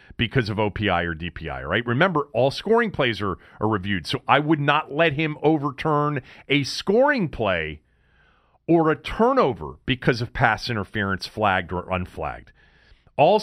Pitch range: 95-140 Hz